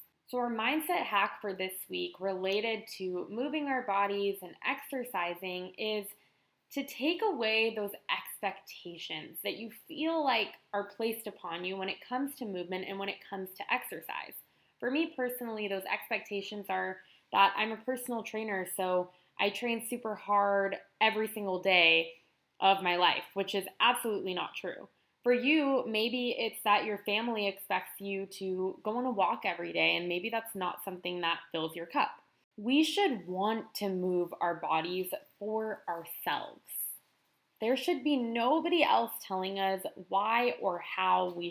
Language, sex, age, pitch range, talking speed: English, female, 20-39, 185-240 Hz, 160 wpm